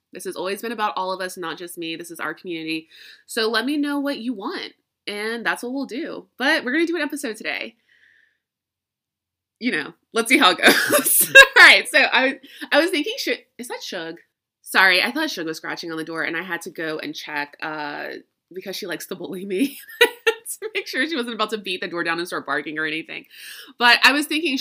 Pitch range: 195-290 Hz